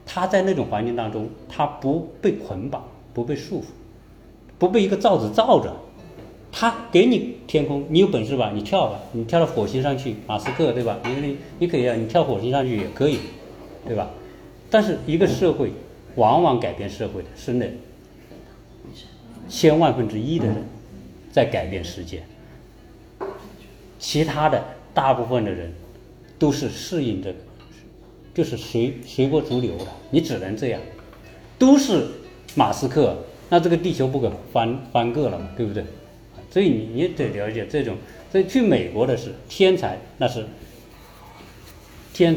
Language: Chinese